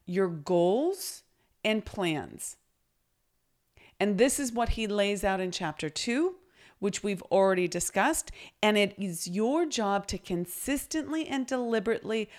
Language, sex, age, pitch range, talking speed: English, female, 40-59, 195-280 Hz, 130 wpm